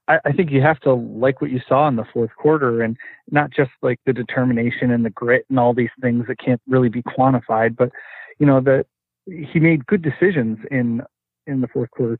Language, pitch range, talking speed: English, 120-135 Hz, 215 wpm